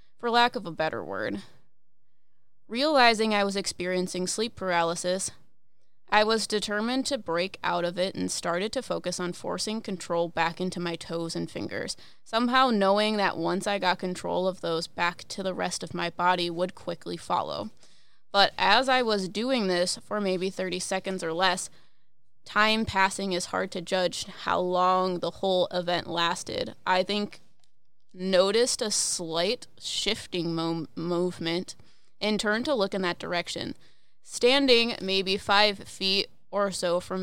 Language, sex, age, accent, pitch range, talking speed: English, female, 20-39, American, 175-205 Hz, 155 wpm